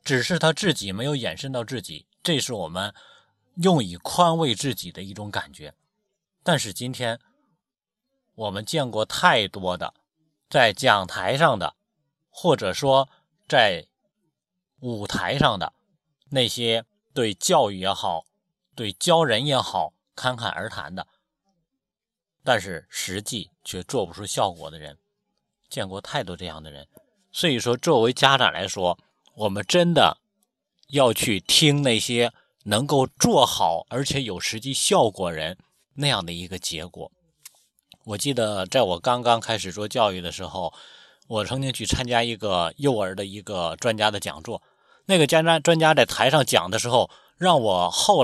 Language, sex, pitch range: Chinese, male, 105-160 Hz